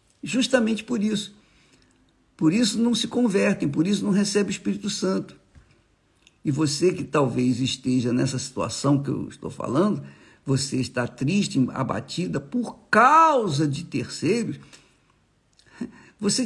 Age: 60-79